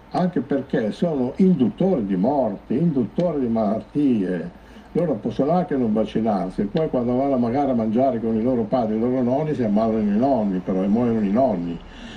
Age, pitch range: 60-79, 105-155 Hz